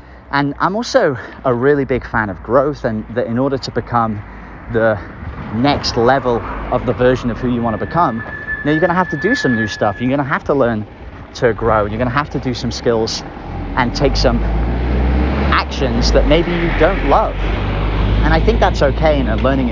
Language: English